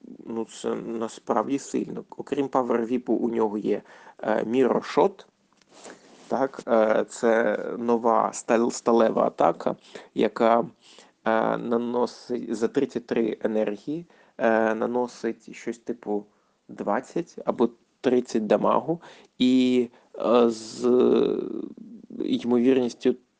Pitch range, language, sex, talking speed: 115-130 Hz, Ukrainian, male, 95 wpm